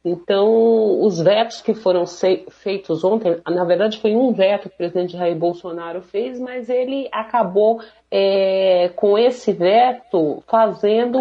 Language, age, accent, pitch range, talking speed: Portuguese, 40-59, Brazilian, 200-250 Hz, 135 wpm